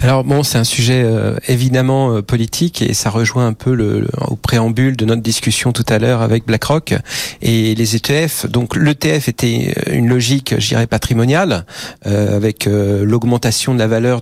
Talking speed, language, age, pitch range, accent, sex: 180 wpm, French, 40-59, 115-135 Hz, French, male